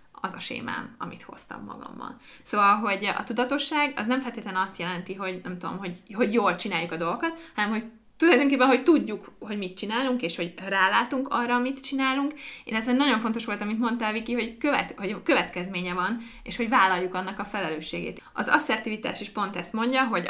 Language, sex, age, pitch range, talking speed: Hungarian, female, 20-39, 190-255 Hz, 185 wpm